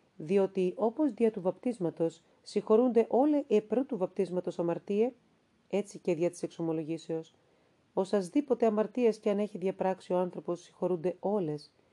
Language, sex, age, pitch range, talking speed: Greek, female, 40-59, 170-215 Hz, 135 wpm